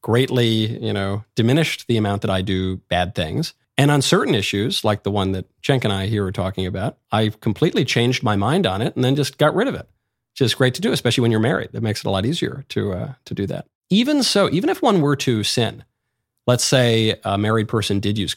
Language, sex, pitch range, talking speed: English, male, 105-135 Hz, 245 wpm